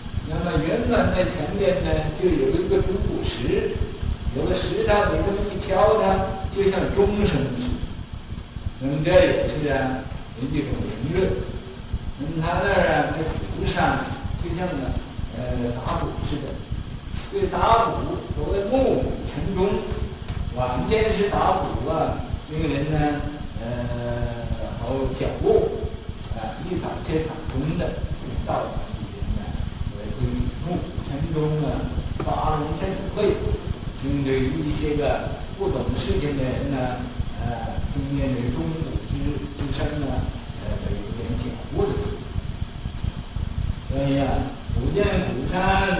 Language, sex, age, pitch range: Chinese, male, 60-79, 100-140 Hz